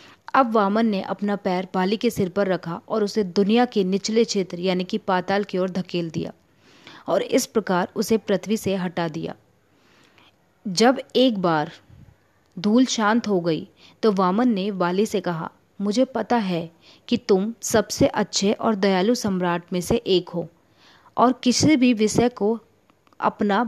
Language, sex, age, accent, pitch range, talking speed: Hindi, female, 30-49, native, 185-225 Hz, 160 wpm